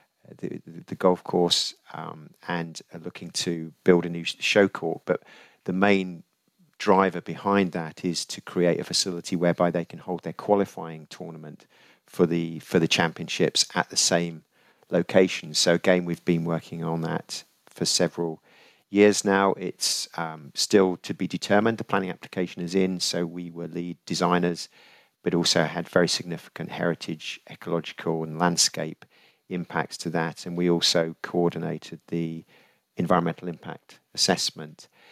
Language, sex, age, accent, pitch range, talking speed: English, male, 40-59, British, 85-95 Hz, 150 wpm